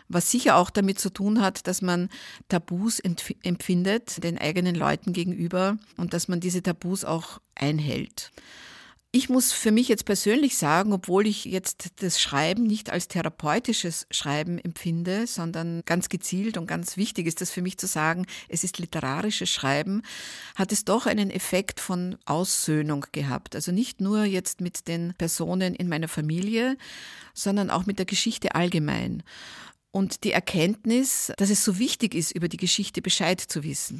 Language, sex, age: German, female, 50-69